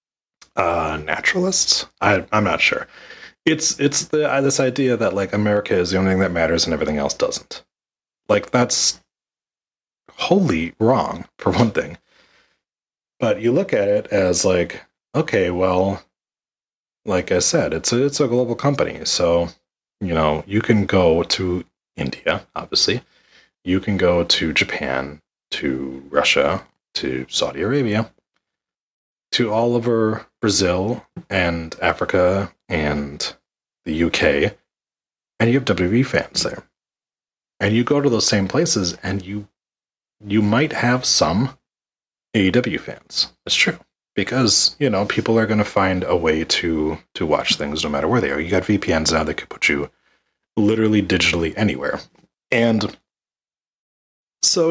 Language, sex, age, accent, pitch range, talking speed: English, male, 30-49, American, 85-120 Hz, 145 wpm